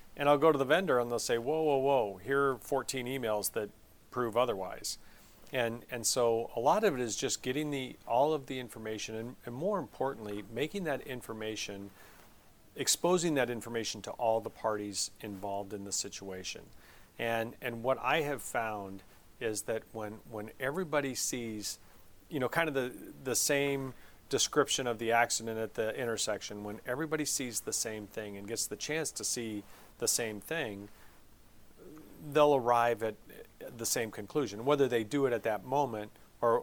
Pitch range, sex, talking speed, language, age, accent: 105-135 Hz, male, 175 wpm, English, 40-59, American